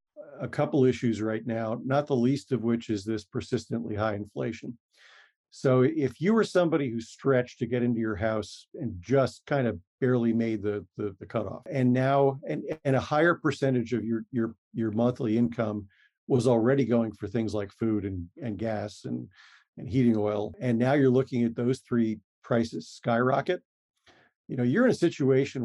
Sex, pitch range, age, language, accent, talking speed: male, 110-130 Hz, 50-69, English, American, 185 wpm